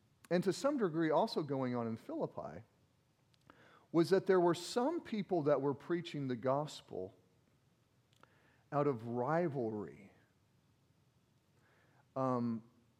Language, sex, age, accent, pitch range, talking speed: English, male, 40-59, American, 115-150 Hz, 110 wpm